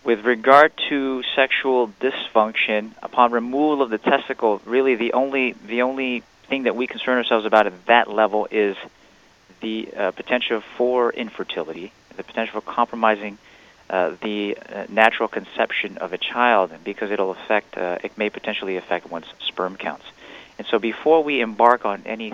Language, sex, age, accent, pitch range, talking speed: English, male, 30-49, American, 95-120 Hz, 160 wpm